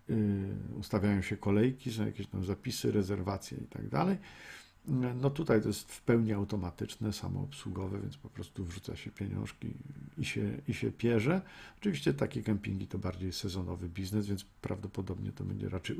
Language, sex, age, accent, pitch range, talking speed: Polish, male, 50-69, native, 100-120 Hz, 150 wpm